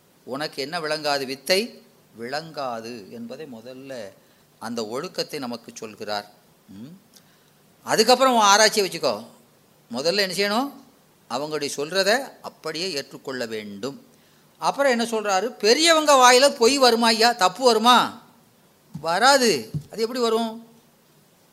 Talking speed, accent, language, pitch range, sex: 100 wpm, native, Tamil, 150-230 Hz, female